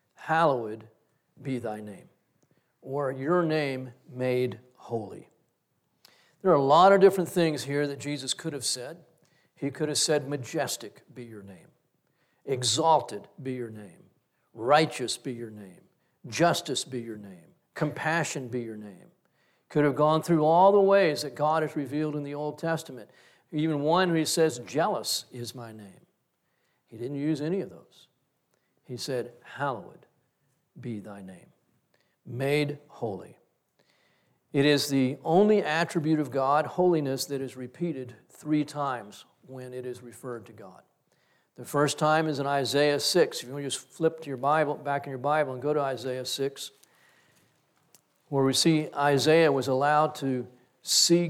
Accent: American